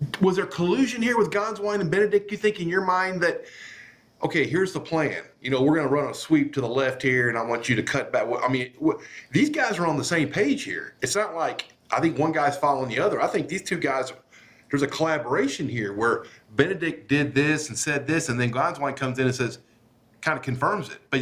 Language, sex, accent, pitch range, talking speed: English, male, American, 125-160 Hz, 240 wpm